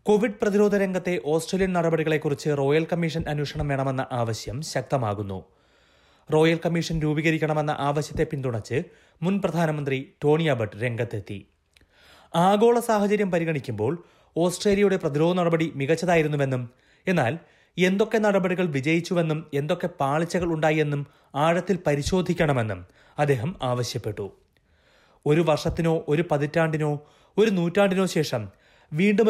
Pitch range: 135-175 Hz